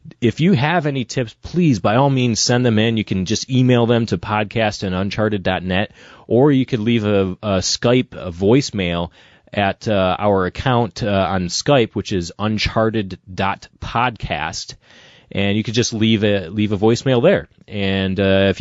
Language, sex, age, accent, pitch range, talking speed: English, male, 30-49, American, 95-120 Hz, 170 wpm